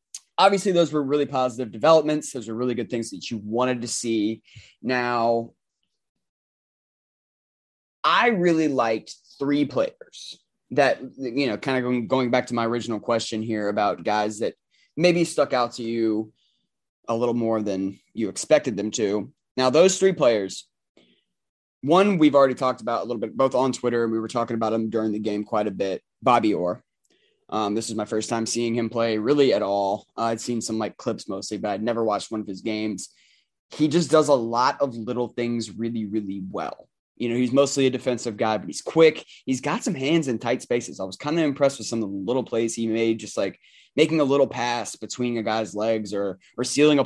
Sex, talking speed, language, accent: male, 205 wpm, English, American